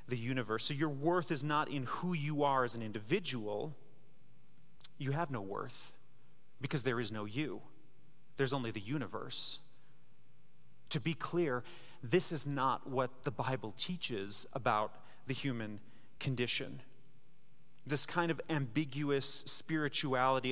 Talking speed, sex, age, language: 135 wpm, male, 30-49, English